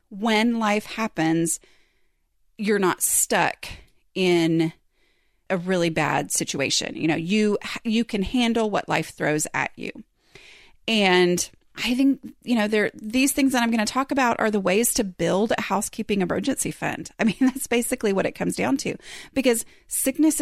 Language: English